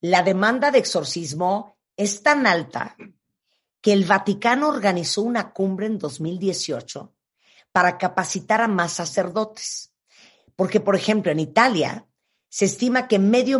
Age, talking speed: 50-69, 130 wpm